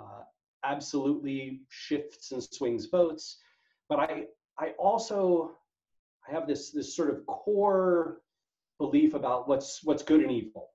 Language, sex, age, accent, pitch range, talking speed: English, male, 40-59, American, 130-200 Hz, 130 wpm